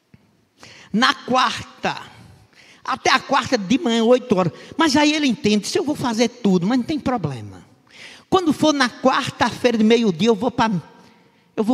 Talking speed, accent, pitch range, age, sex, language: 165 wpm, Brazilian, 190-245 Hz, 50-69, male, Portuguese